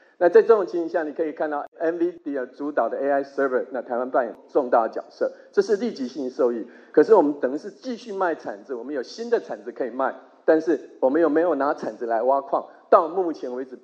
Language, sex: Chinese, male